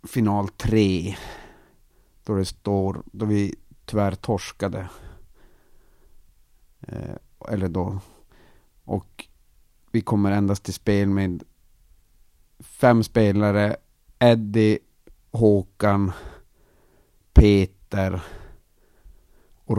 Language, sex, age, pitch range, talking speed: Swedish, male, 50-69, 95-105 Hz, 75 wpm